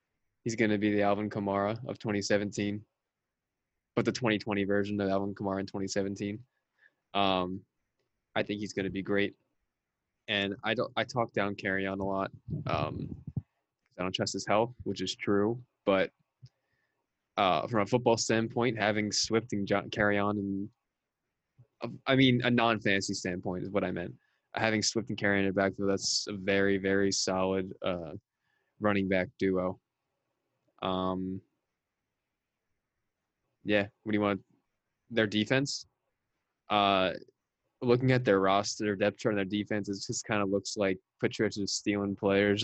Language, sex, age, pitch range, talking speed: English, male, 20-39, 95-110 Hz, 155 wpm